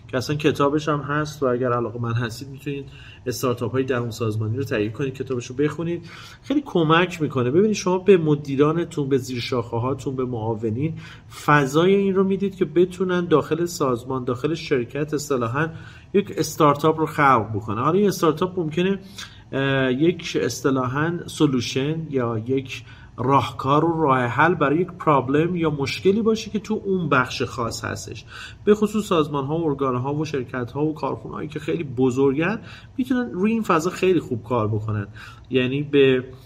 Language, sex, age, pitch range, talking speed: Persian, male, 30-49, 125-170 Hz, 160 wpm